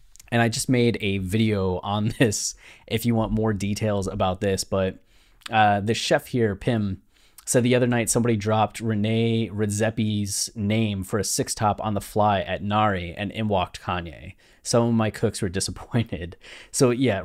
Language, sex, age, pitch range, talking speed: English, male, 20-39, 95-115 Hz, 175 wpm